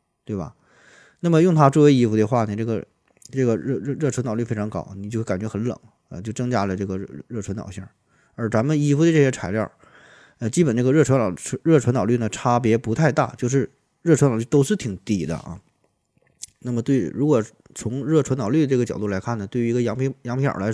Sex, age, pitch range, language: male, 20-39, 105-140 Hz, Chinese